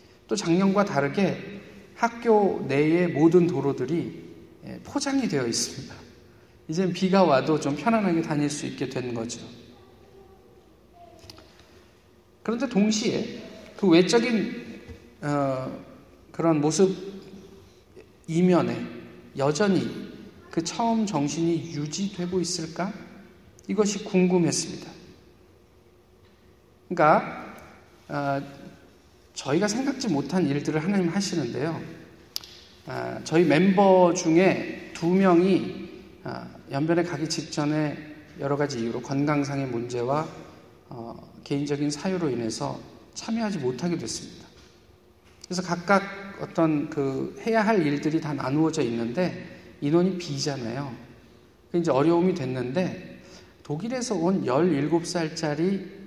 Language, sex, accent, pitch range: Korean, male, native, 135-185 Hz